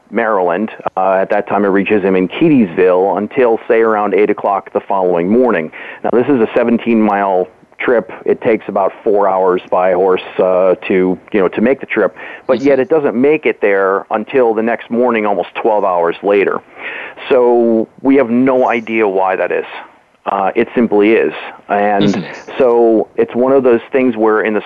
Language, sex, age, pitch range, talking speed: English, male, 40-59, 100-115 Hz, 185 wpm